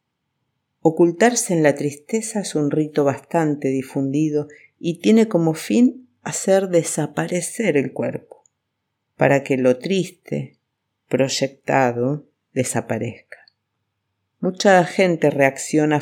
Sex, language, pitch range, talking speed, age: female, Spanish, 130-170 Hz, 95 wpm, 50-69